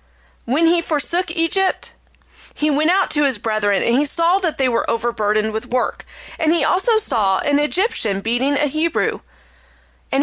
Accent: American